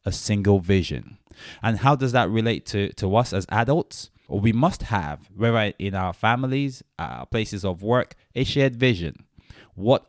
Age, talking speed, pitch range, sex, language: 20-39, 160 wpm, 95-115 Hz, male, English